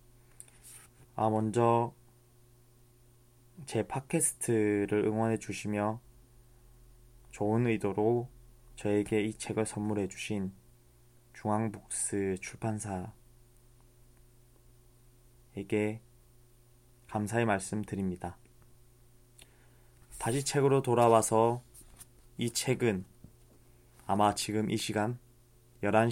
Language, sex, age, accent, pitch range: Korean, male, 20-39, native, 105-120 Hz